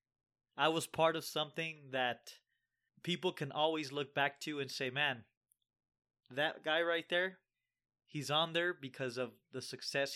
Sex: male